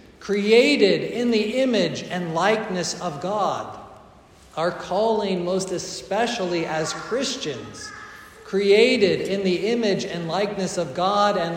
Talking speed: 120 wpm